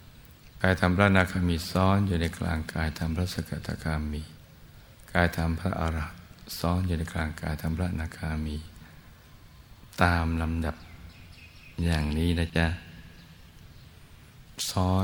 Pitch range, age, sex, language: 80-90 Hz, 60-79, male, Thai